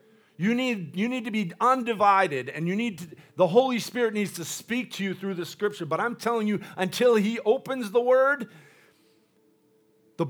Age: 50-69